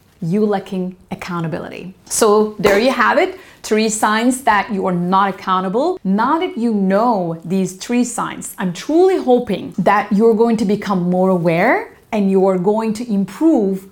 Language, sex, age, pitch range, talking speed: English, female, 30-49, 180-225 Hz, 165 wpm